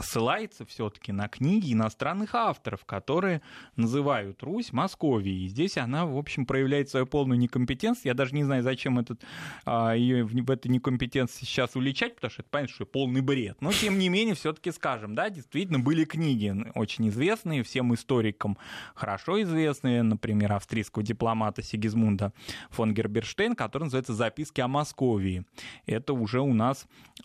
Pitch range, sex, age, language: 110-145 Hz, male, 20-39, Russian